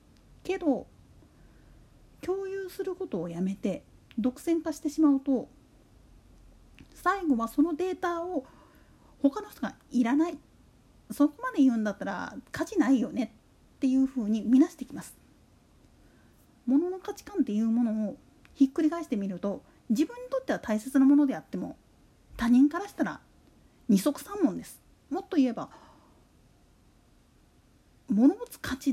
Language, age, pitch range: Japanese, 40-59, 225-310 Hz